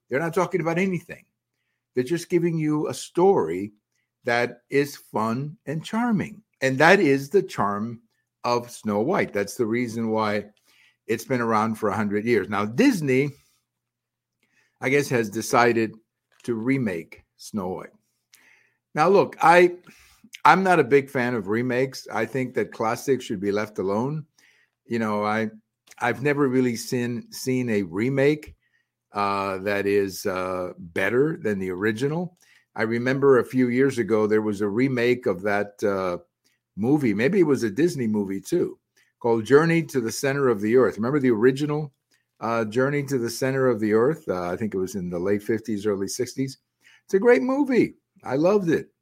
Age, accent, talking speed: 50-69, American, 170 wpm